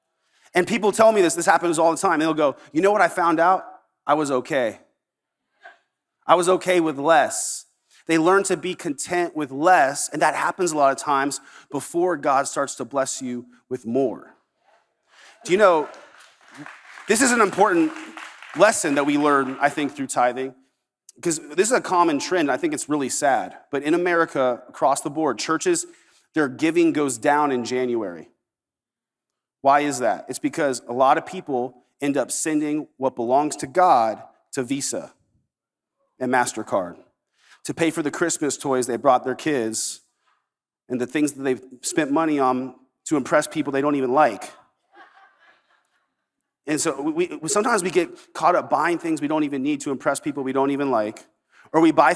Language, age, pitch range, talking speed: English, 30-49, 130-180 Hz, 180 wpm